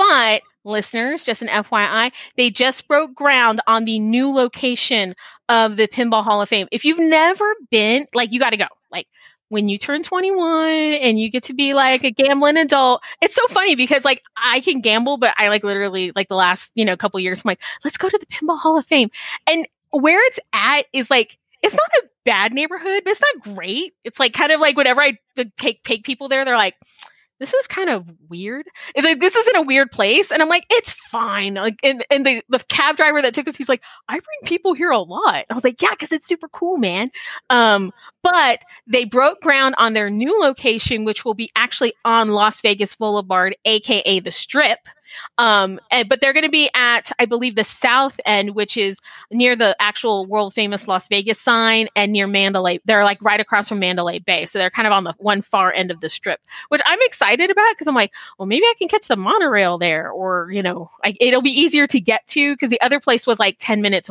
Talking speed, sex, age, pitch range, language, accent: 225 wpm, female, 20-39, 210-295 Hz, English, American